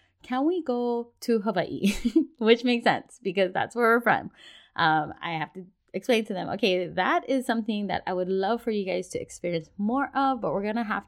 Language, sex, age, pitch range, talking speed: English, female, 20-39, 180-240 Hz, 215 wpm